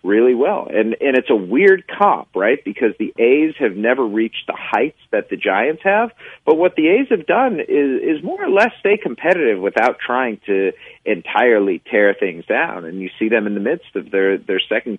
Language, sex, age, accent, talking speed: English, male, 40-59, American, 210 wpm